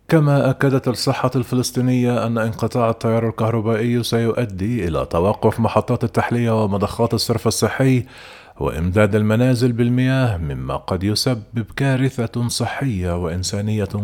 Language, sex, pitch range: Arabic, male, 105-120 Hz